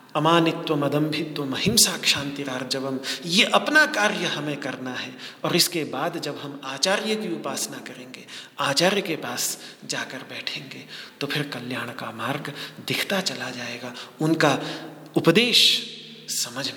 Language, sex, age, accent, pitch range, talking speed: Hindi, male, 40-59, native, 135-170 Hz, 130 wpm